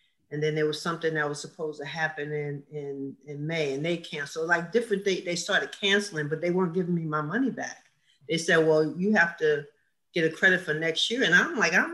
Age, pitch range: 40-59, 150-185 Hz